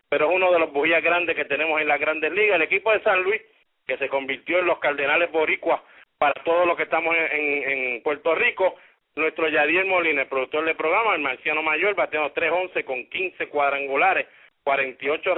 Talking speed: 205 wpm